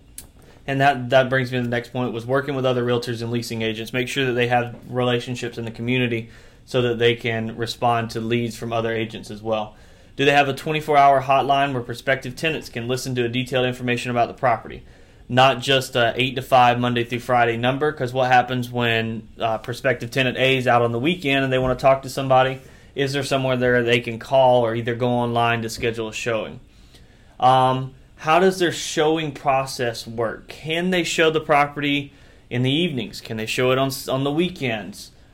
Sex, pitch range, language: male, 120-140 Hz, English